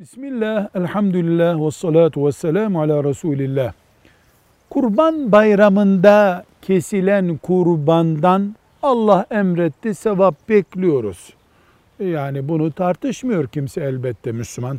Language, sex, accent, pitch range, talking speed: Turkish, male, native, 145-195 Hz, 85 wpm